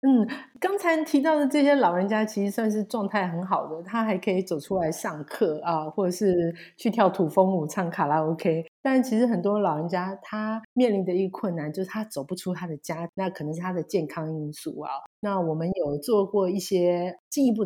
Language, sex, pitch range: Chinese, female, 165-225 Hz